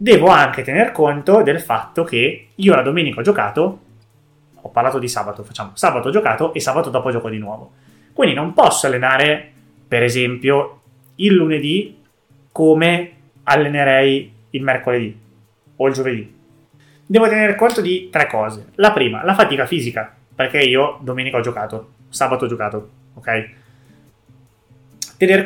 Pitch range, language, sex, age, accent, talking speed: 115-150 Hz, Italian, male, 20-39, native, 145 wpm